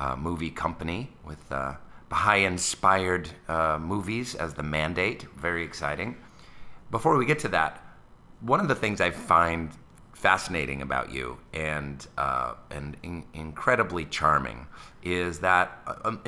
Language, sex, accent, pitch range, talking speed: English, male, American, 75-100 Hz, 135 wpm